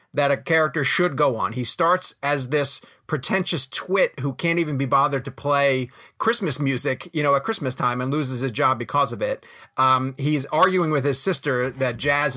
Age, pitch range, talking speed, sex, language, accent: 30-49, 130-185 Hz, 200 wpm, male, English, American